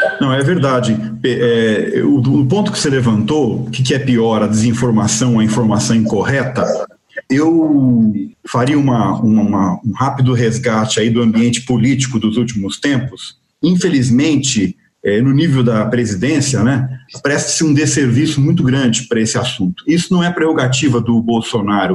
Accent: Brazilian